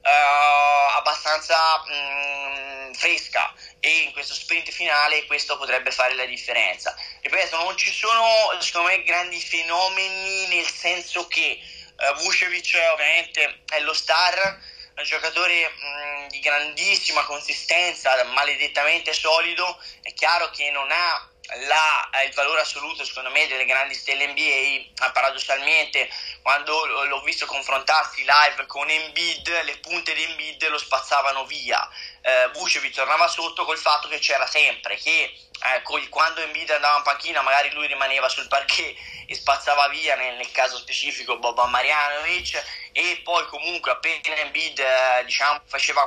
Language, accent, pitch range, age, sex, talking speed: Italian, native, 140-170 Hz, 20-39, male, 135 wpm